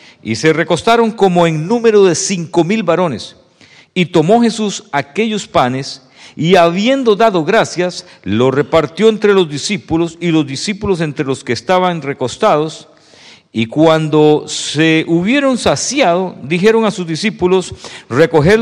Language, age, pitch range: English, 50-69, 140-195 Hz